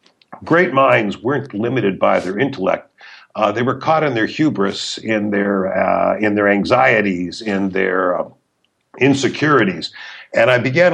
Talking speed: 155 wpm